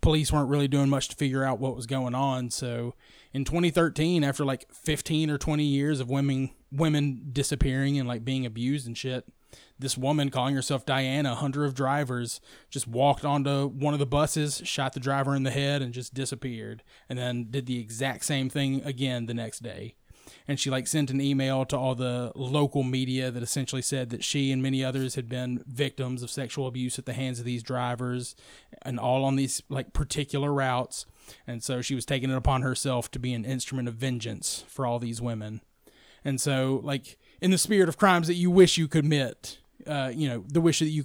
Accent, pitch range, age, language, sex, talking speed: American, 125-140 Hz, 20-39, English, male, 210 wpm